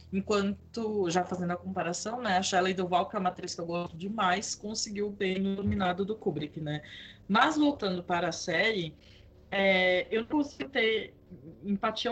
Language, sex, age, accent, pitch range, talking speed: Portuguese, female, 20-39, Brazilian, 175-225 Hz, 170 wpm